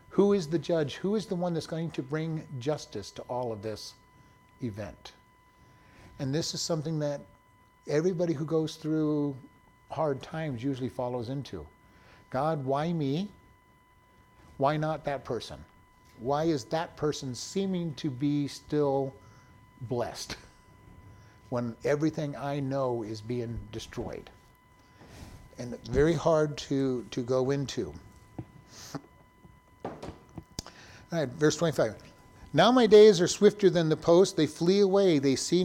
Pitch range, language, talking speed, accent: 130-165 Hz, English, 135 wpm, American